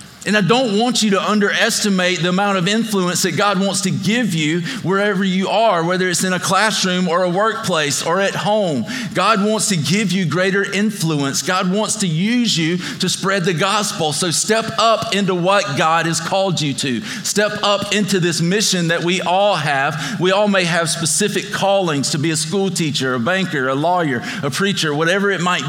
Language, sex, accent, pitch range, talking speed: English, male, American, 155-195 Hz, 200 wpm